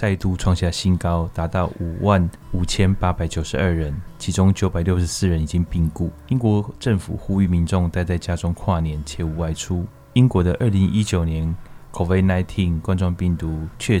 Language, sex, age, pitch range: Chinese, male, 20-39, 85-100 Hz